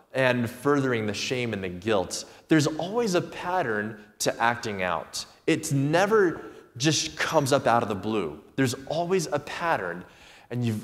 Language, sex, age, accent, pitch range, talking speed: English, male, 20-39, American, 105-140 Hz, 155 wpm